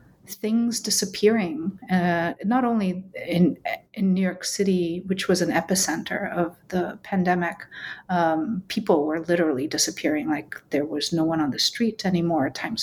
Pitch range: 170-195 Hz